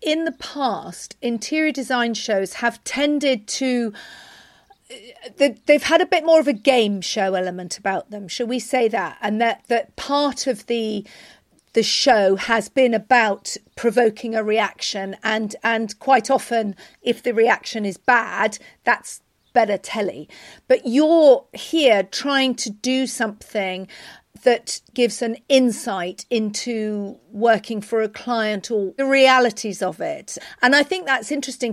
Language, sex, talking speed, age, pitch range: English, female, 145 wpm, 40-59, 220-275 Hz